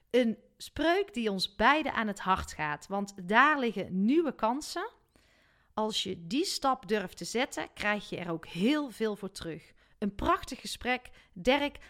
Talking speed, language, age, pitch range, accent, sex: 165 wpm, Dutch, 40-59, 185-275 Hz, Dutch, female